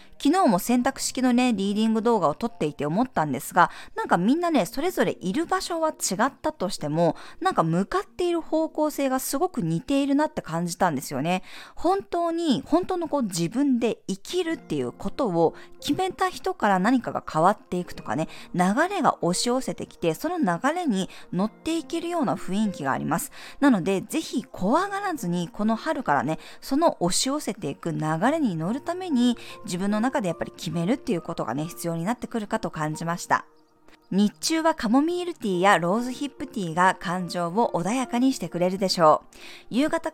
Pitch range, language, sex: 180-290 Hz, Japanese, female